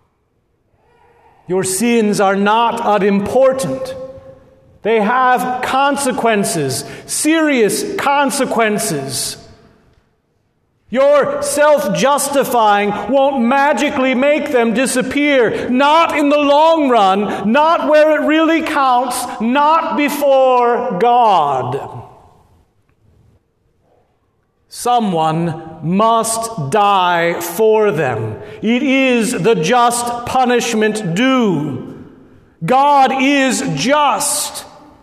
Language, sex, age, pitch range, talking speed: English, male, 40-59, 205-275 Hz, 75 wpm